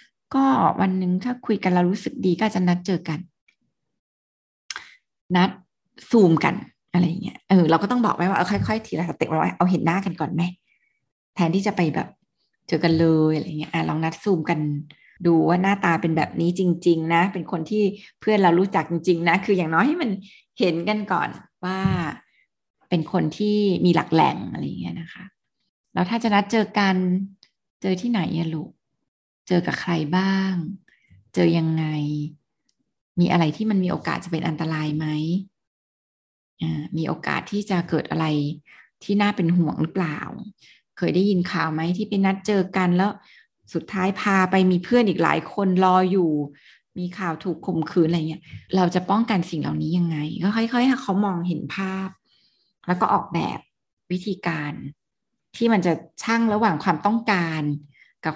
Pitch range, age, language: 160-195 Hz, 20-39, Thai